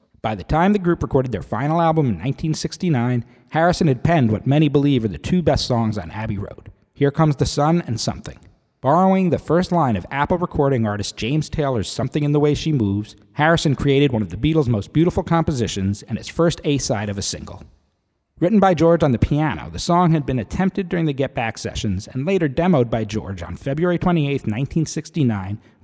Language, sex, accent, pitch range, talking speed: English, male, American, 110-155 Hz, 205 wpm